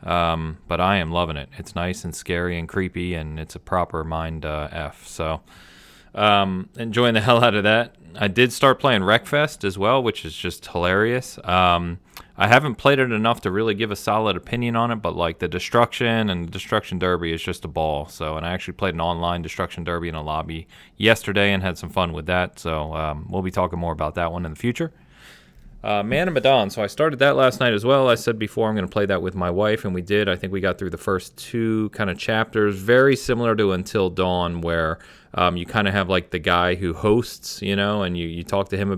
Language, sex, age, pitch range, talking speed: English, male, 30-49, 85-110 Hz, 240 wpm